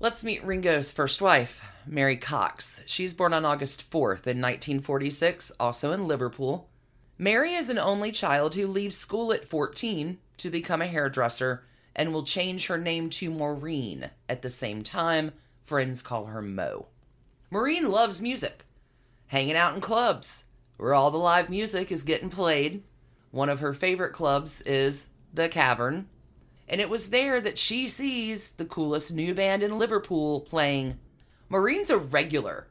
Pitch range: 125-170 Hz